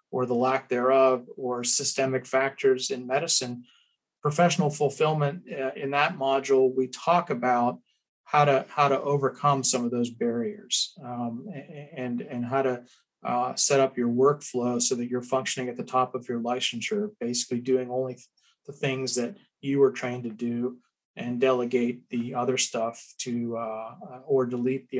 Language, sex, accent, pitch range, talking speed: English, male, American, 125-145 Hz, 160 wpm